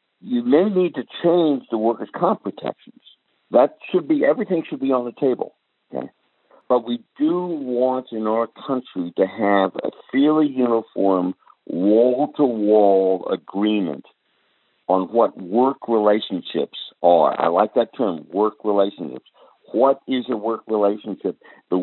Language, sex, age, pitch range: English, male, 60-79, 95-130 Hz